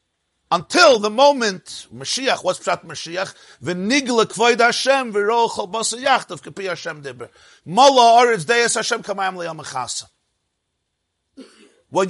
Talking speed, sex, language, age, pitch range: 110 wpm, male, English, 50-69, 150-235 Hz